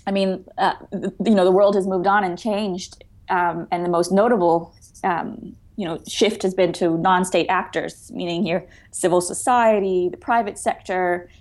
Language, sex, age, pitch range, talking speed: English, female, 20-39, 170-200 Hz, 175 wpm